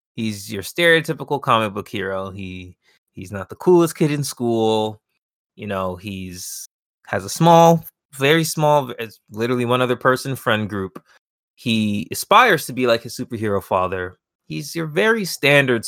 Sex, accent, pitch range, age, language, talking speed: male, American, 105-145 Hz, 20-39, English, 150 wpm